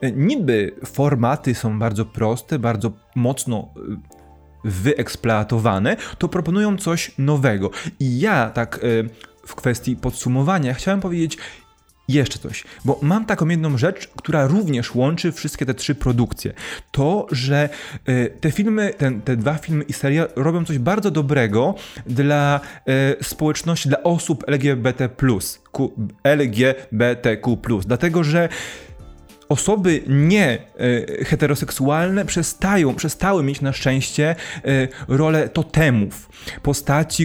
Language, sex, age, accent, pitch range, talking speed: Polish, male, 20-39, native, 120-155 Hz, 105 wpm